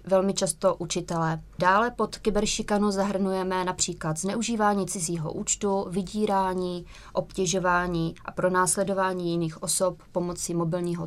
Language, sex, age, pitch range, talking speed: Czech, female, 20-39, 180-205 Hz, 105 wpm